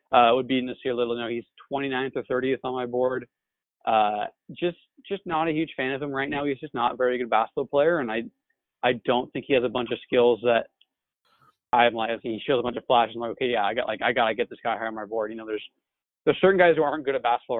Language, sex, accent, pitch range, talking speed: English, male, American, 115-135 Hz, 285 wpm